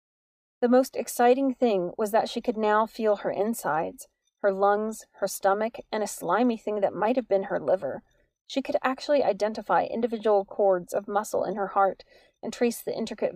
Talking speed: 185 wpm